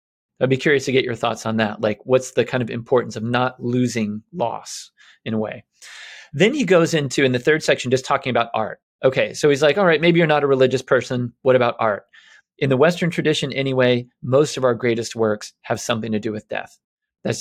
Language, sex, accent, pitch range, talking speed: English, male, American, 115-140 Hz, 230 wpm